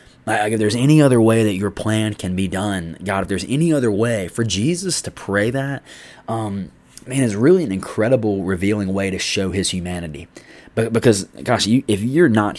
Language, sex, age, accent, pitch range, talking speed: English, male, 20-39, American, 95-115 Hz, 200 wpm